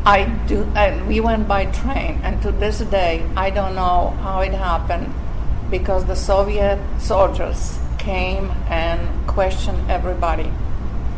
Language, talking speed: English, 135 wpm